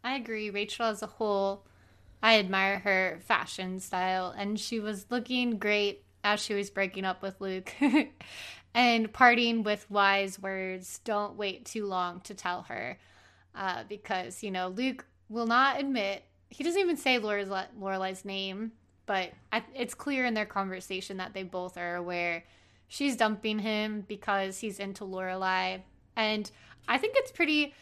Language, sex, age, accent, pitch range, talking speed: English, female, 20-39, American, 190-235 Hz, 155 wpm